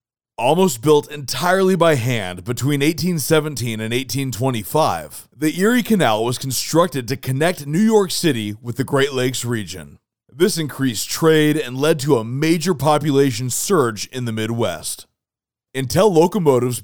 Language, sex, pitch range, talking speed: English, male, 120-165 Hz, 140 wpm